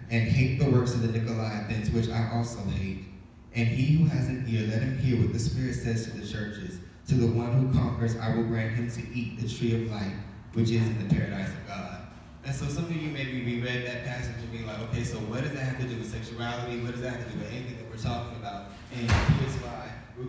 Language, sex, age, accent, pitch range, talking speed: English, male, 20-39, American, 115-135 Hz, 255 wpm